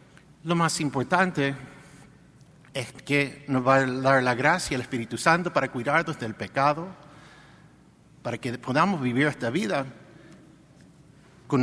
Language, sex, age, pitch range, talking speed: English, male, 50-69, 130-165 Hz, 130 wpm